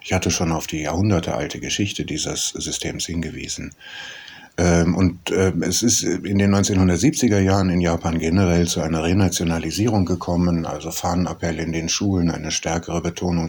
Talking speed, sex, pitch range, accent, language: 140 wpm, male, 85-105 Hz, German, German